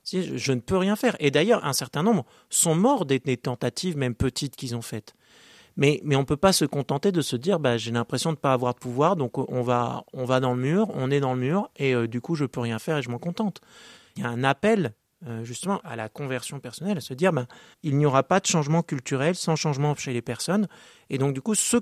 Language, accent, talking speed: French, French, 280 wpm